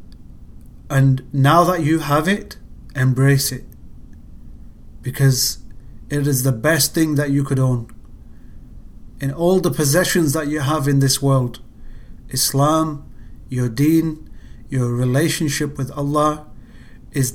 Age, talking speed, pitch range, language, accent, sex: 40-59, 125 wpm, 125-160 Hz, English, British, male